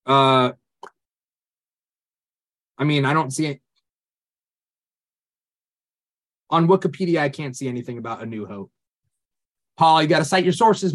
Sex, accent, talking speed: male, American, 125 wpm